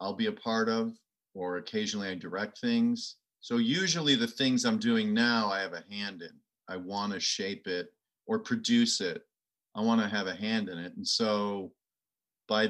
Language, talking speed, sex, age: English, 195 wpm, male, 40-59